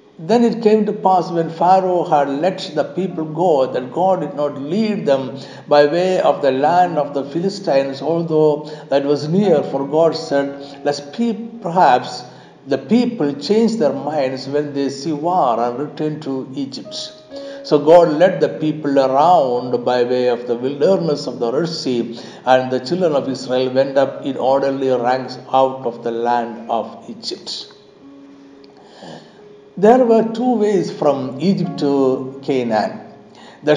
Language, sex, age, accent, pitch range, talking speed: Malayalam, male, 60-79, native, 135-175 Hz, 155 wpm